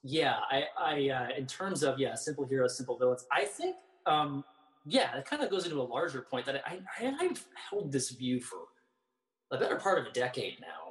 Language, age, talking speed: English, 20-39, 215 wpm